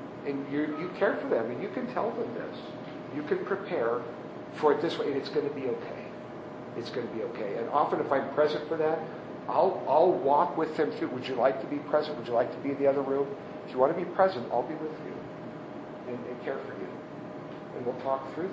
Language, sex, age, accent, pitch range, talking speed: English, male, 50-69, American, 135-155 Hz, 255 wpm